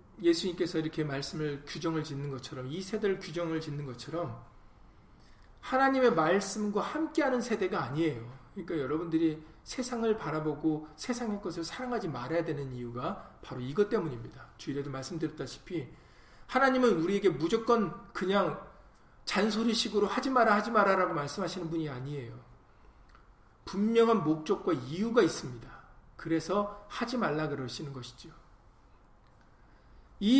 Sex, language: male, Korean